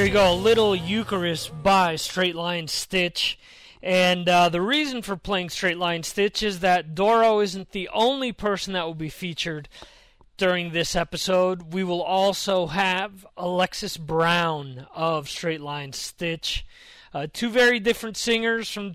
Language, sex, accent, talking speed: English, male, American, 155 wpm